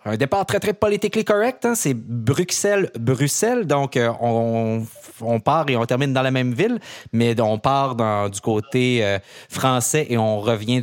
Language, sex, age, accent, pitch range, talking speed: French, male, 30-49, Canadian, 110-140 Hz, 175 wpm